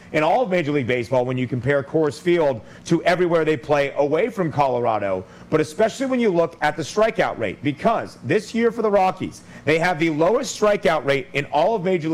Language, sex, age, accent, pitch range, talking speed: English, male, 40-59, American, 145-185 Hz, 215 wpm